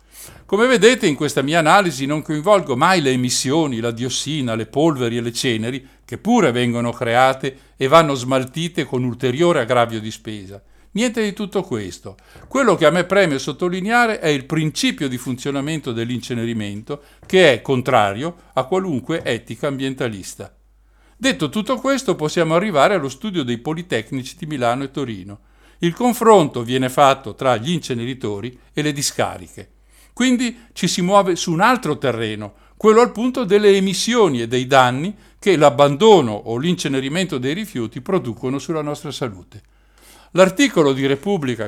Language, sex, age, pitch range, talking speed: Italian, male, 50-69, 125-180 Hz, 150 wpm